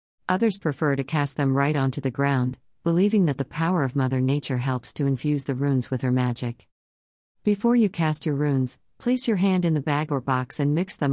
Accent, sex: American, female